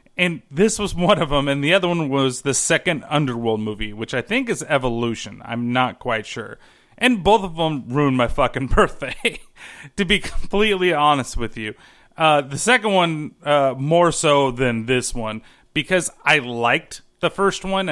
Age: 30-49